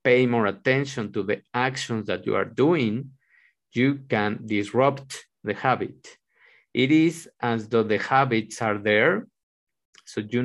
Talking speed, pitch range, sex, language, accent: 145 wpm, 110-130 Hz, male, English, Mexican